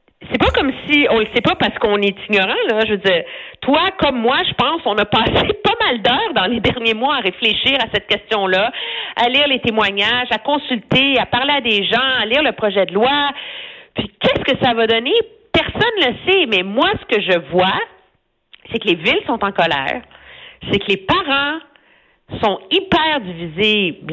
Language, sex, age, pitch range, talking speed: French, female, 50-69, 190-270 Hz, 200 wpm